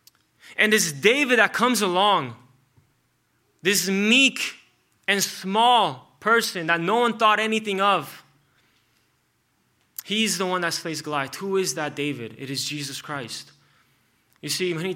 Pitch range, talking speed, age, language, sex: 140-210 Hz, 135 wpm, 20-39, English, male